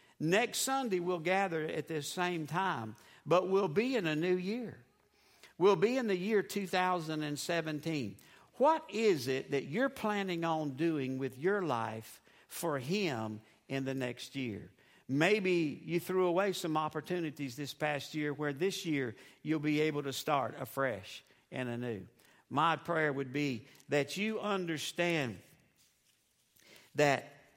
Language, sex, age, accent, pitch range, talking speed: English, male, 60-79, American, 135-185 Hz, 145 wpm